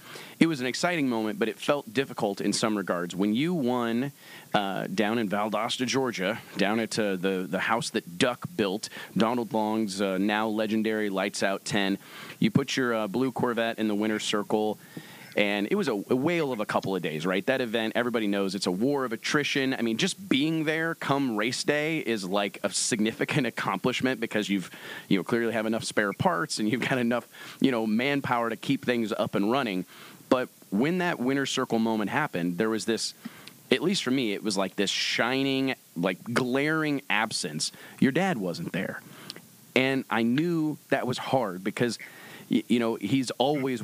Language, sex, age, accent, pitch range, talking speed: English, male, 30-49, American, 100-130 Hz, 190 wpm